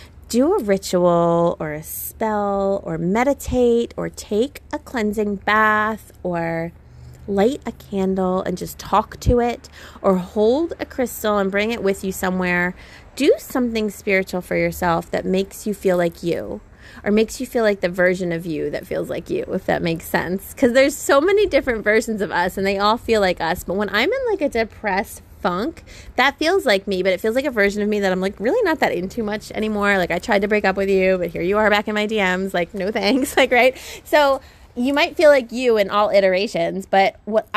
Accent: American